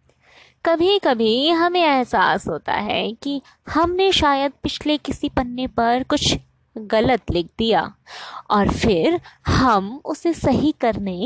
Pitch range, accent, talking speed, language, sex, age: 235-315 Hz, native, 125 wpm, Hindi, female, 20-39